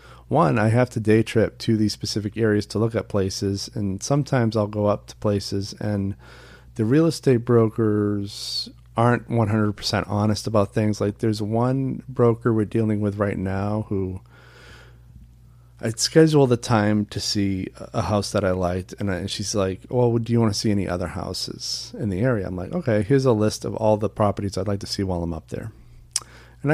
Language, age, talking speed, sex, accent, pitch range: English, 40-59, 195 wpm, male, American, 95-120 Hz